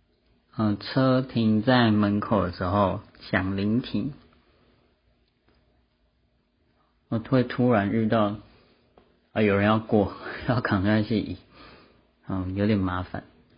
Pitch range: 100-125 Hz